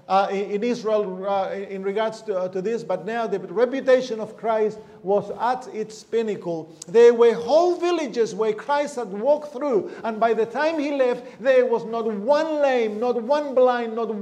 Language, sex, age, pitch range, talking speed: English, male, 50-69, 180-250 Hz, 185 wpm